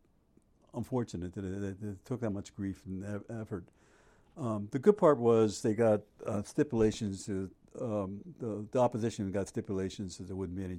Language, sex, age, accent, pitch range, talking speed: English, male, 60-79, American, 95-110 Hz, 160 wpm